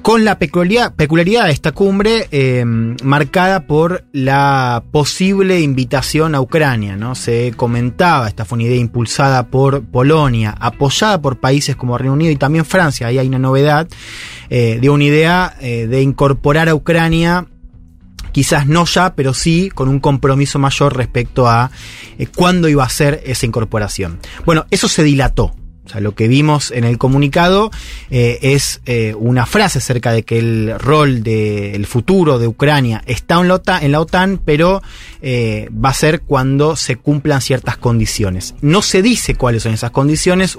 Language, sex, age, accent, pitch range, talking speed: Spanish, male, 20-39, Argentinian, 120-155 Hz, 165 wpm